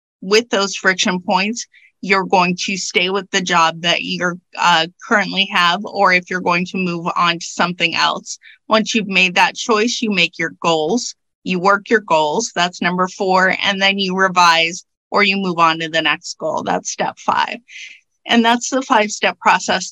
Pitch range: 180-230 Hz